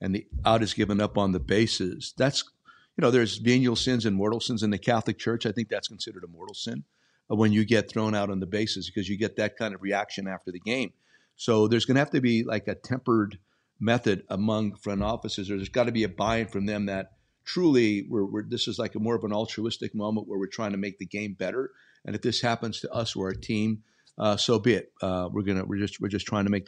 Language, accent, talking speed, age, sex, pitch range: English, American, 260 wpm, 50-69, male, 100-115 Hz